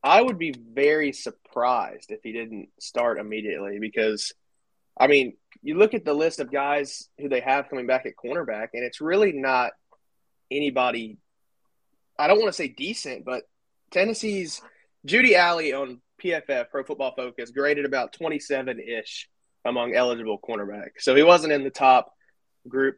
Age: 20-39